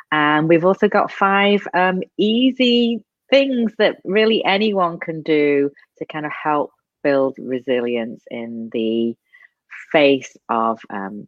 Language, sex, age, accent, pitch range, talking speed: English, female, 30-49, British, 125-180 Hz, 130 wpm